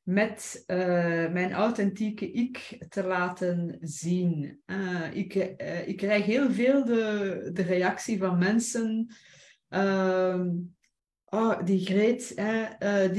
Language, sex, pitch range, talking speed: Dutch, female, 180-215 Hz, 115 wpm